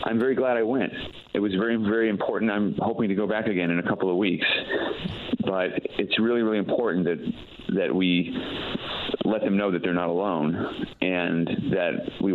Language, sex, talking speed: English, male, 190 wpm